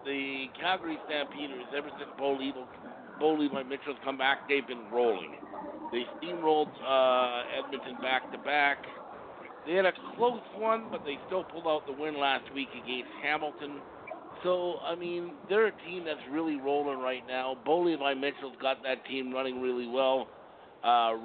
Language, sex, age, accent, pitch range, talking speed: English, male, 50-69, American, 125-150 Hz, 170 wpm